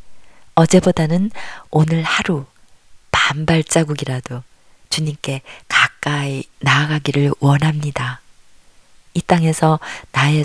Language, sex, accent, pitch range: Korean, female, native, 135-175 Hz